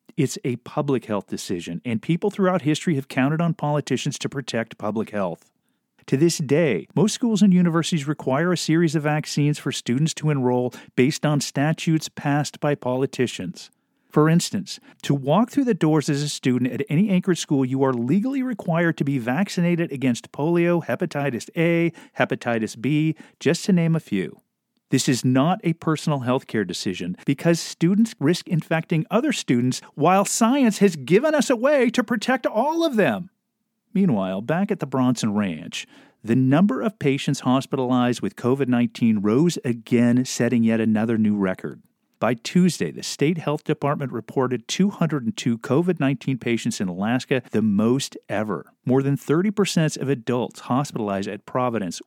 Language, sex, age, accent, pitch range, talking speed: English, male, 40-59, American, 130-185 Hz, 160 wpm